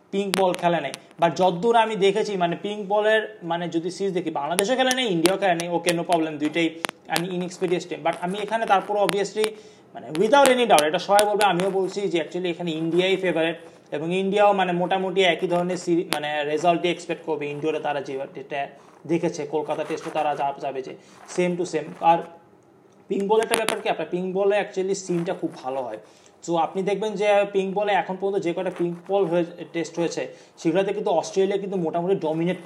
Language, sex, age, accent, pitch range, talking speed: Bengali, male, 30-49, native, 160-200 Hz, 175 wpm